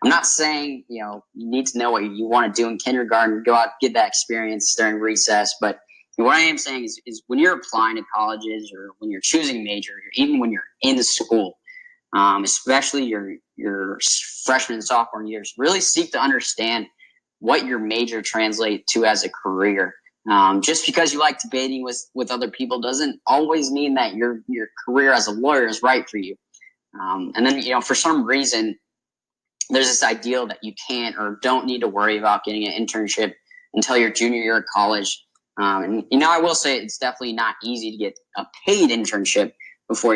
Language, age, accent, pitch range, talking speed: English, 20-39, American, 110-130 Hz, 205 wpm